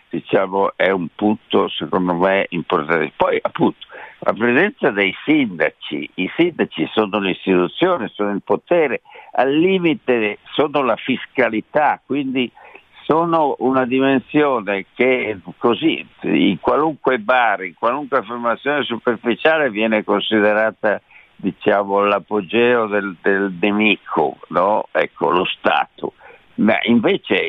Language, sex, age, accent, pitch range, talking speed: Italian, male, 60-79, native, 100-135 Hz, 110 wpm